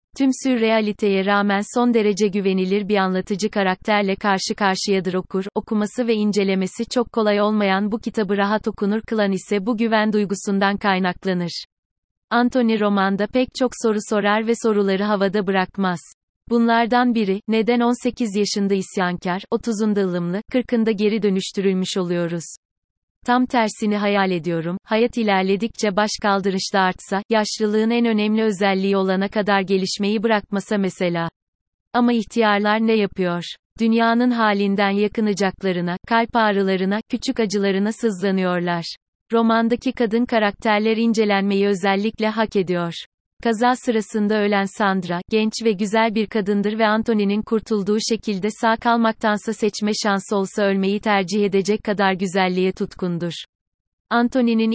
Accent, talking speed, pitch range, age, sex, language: native, 125 wpm, 195-225 Hz, 30-49, female, Turkish